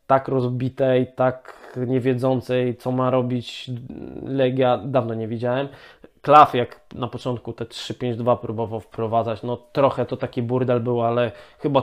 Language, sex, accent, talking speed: Polish, male, native, 135 wpm